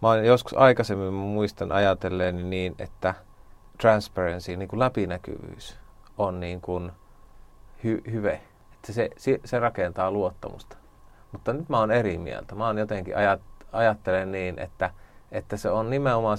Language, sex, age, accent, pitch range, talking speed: Finnish, male, 30-49, native, 95-110 Hz, 130 wpm